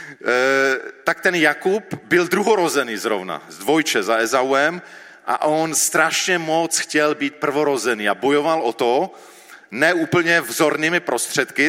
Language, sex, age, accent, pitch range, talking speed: Czech, male, 40-59, native, 120-150 Hz, 130 wpm